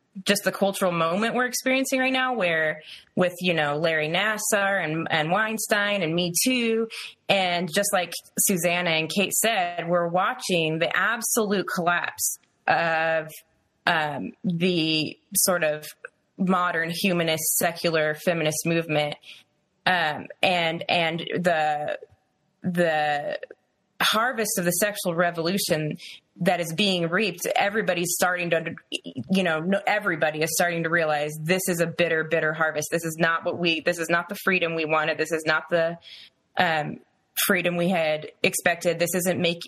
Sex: female